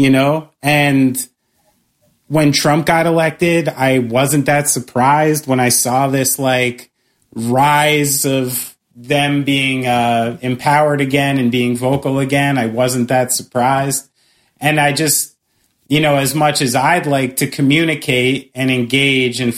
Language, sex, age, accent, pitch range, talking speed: English, male, 30-49, American, 125-145 Hz, 140 wpm